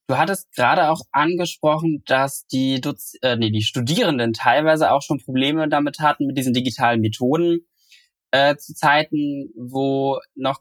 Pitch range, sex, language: 125-165 Hz, male, German